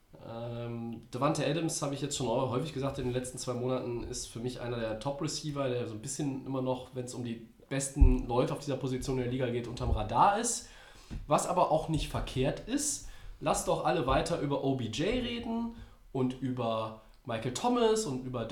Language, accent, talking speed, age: German, German, 200 wpm, 20-39